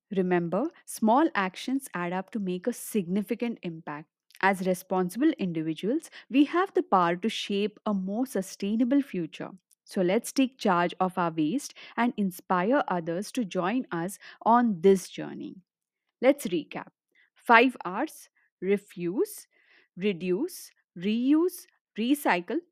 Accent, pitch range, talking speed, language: Indian, 185-265 Hz, 125 wpm, English